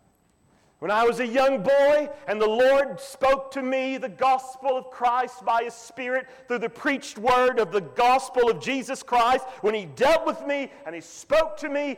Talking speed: 195 wpm